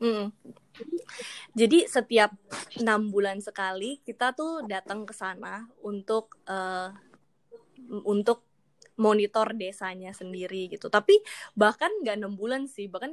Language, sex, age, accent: Indonesian, female, 20-39, native